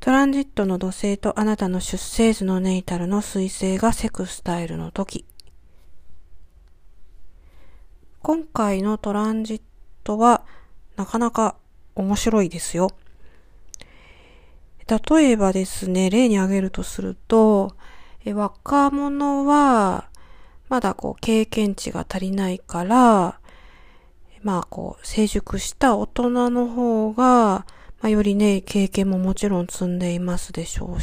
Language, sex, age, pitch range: Japanese, female, 40-59, 180-235 Hz